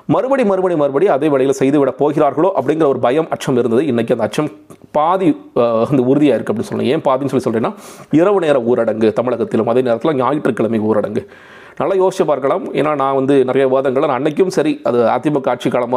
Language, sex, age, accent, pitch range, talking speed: Tamil, male, 30-49, native, 120-150 Hz, 170 wpm